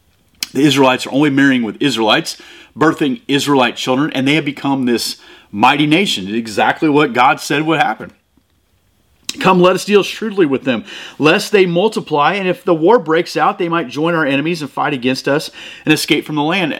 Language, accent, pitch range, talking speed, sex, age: English, American, 130-175 Hz, 190 wpm, male, 30-49